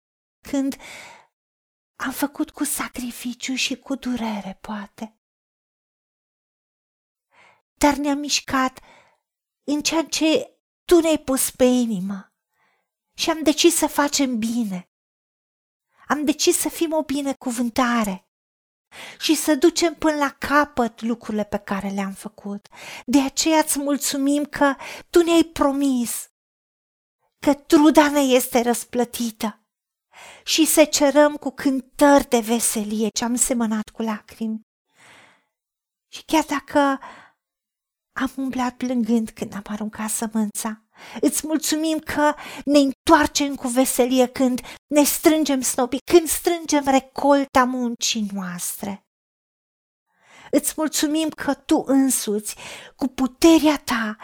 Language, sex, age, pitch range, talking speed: Romanian, female, 40-59, 235-295 Hz, 110 wpm